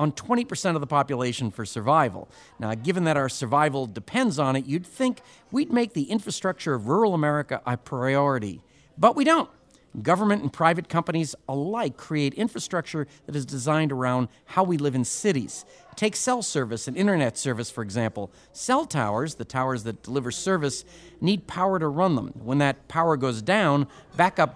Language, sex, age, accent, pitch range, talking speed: English, male, 50-69, American, 125-185 Hz, 175 wpm